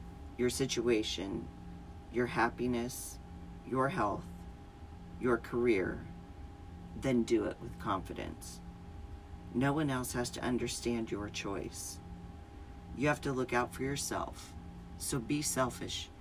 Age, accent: 40-59, American